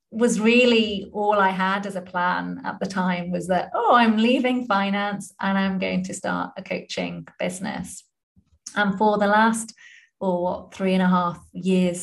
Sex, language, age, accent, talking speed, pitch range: female, English, 20-39, British, 175 wpm, 175-205 Hz